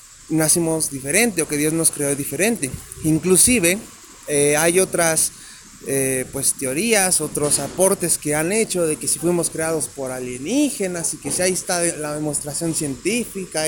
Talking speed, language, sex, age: 155 wpm, Spanish, male, 30-49